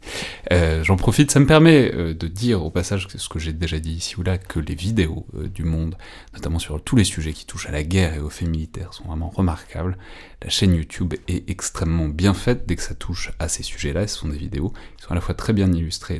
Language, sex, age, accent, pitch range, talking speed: French, male, 30-49, French, 80-105 Hz, 250 wpm